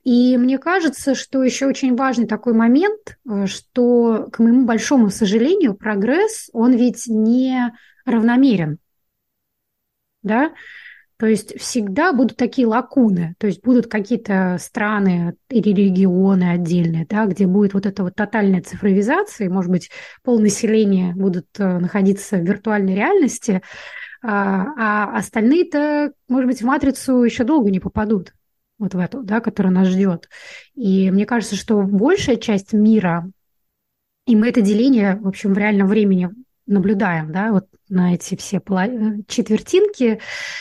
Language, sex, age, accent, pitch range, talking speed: Russian, female, 20-39, native, 195-245 Hz, 135 wpm